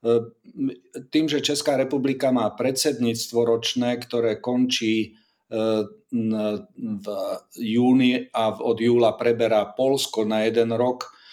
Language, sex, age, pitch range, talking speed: Slovak, male, 40-59, 115-125 Hz, 100 wpm